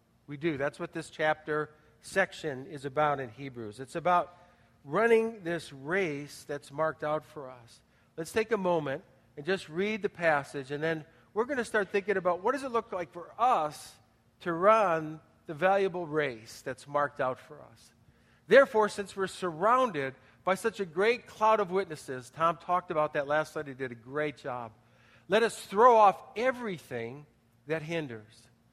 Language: English